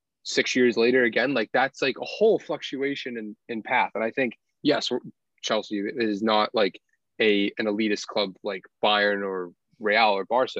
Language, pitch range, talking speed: English, 105-125 Hz, 180 wpm